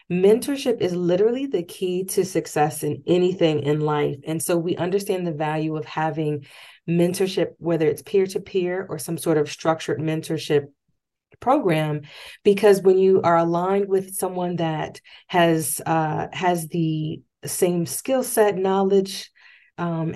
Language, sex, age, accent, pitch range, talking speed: English, female, 30-49, American, 155-190 Hz, 140 wpm